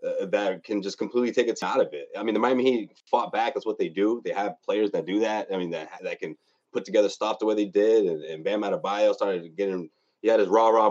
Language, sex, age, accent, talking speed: English, male, 30-49, American, 275 wpm